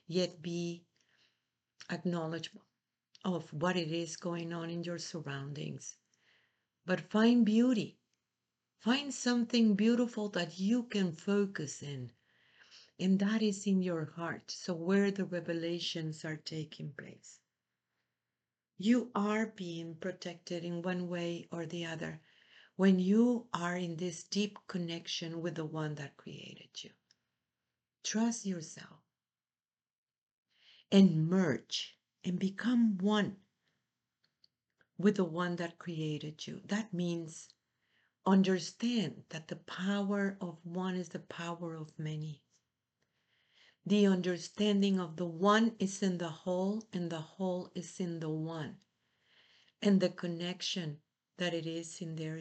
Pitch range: 165-195 Hz